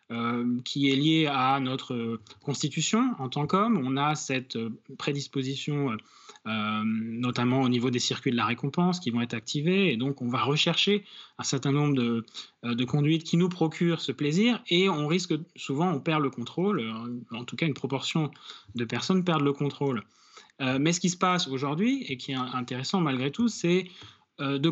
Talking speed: 185 wpm